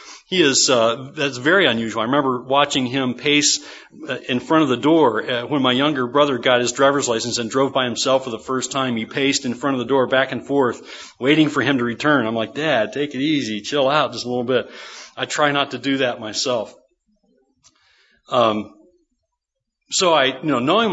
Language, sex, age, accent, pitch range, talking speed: English, male, 40-59, American, 130-165 Hz, 205 wpm